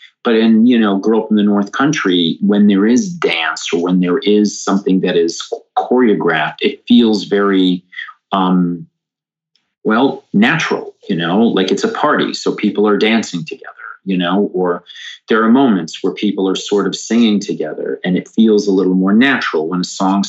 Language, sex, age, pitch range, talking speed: English, male, 40-59, 100-135 Hz, 185 wpm